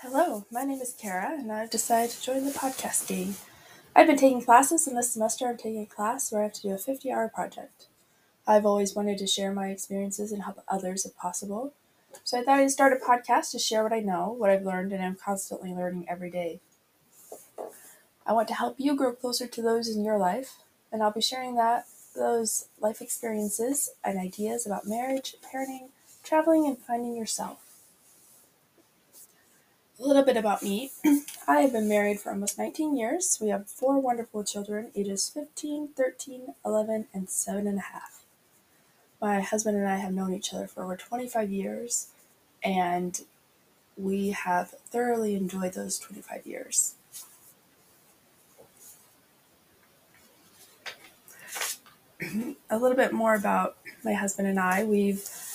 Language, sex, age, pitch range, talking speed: English, female, 20-39, 195-255 Hz, 165 wpm